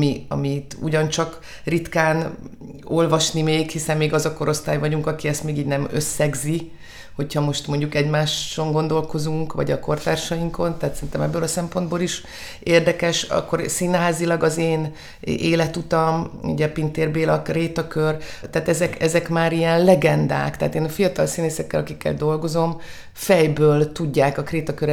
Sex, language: female, Hungarian